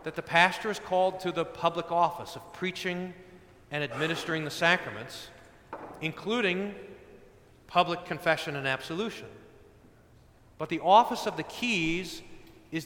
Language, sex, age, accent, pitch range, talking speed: English, male, 40-59, American, 140-205 Hz, 125 wpm